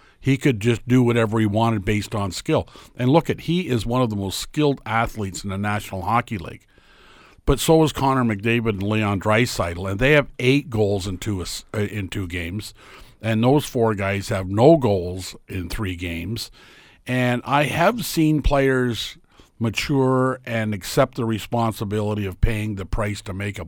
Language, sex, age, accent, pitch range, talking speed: English, male, 50-69, American, 105-130 Hz, 180 wpm